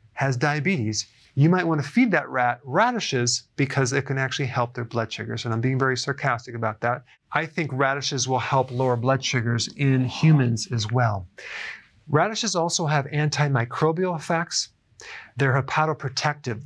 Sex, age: male, 30-49